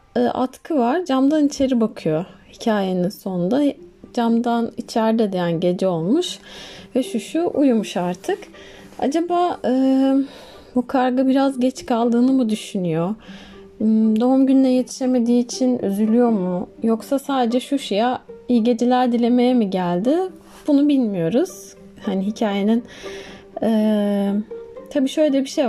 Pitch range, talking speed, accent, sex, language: 220-270 Hz, 115 wpm, native, female, Turkish